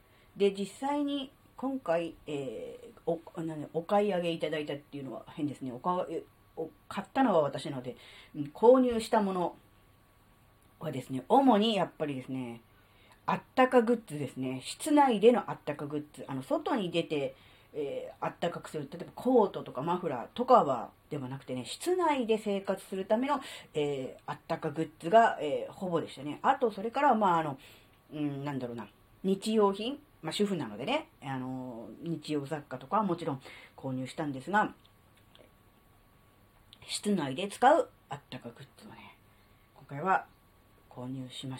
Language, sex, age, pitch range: Japanese, female, 40-59, 125-210 Hz